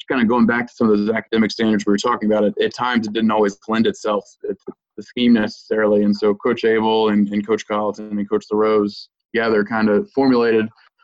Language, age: English, 20-39